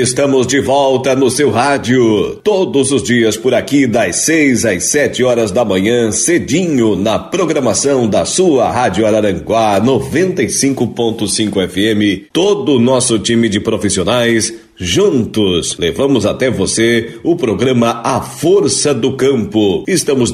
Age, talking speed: 50-69, 130 wpm